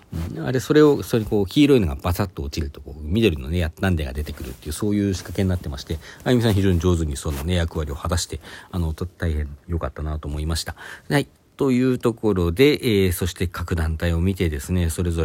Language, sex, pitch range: Japanese, male, 85-120 Hz